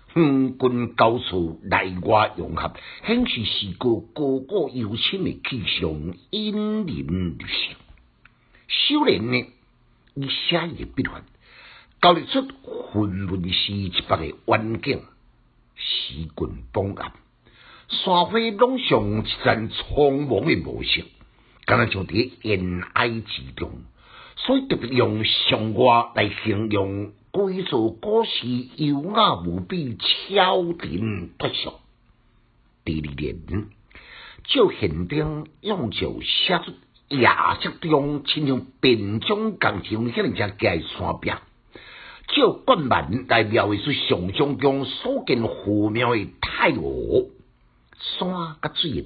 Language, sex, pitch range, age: Chinese, male, 100-155 Hz, 60-79